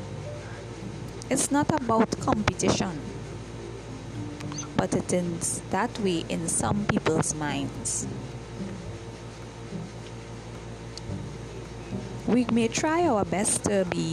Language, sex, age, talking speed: English, female, 20-39, 85 wpm